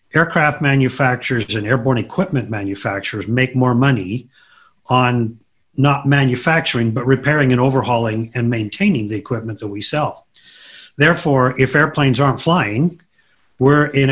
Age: 50-69